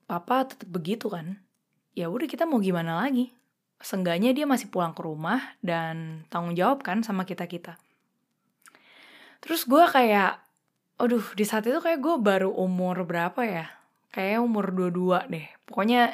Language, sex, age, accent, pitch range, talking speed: Indonesian, female, 20-39, native, 185-245 Hz, 150 wpm